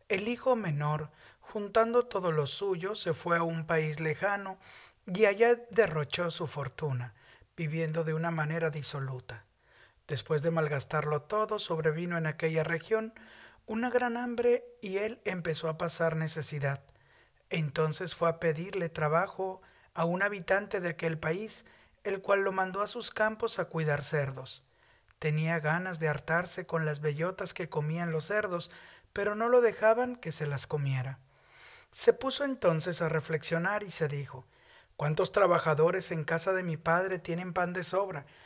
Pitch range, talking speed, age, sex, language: 150-200 Hz, 155 wpm, 50-69, male, Spanish